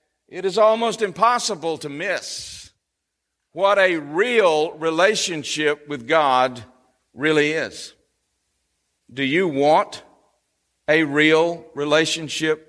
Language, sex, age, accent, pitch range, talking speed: English, male, 50-69, American, 155-210 Hz, 95 wpm